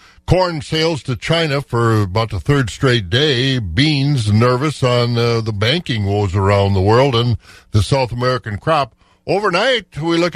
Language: English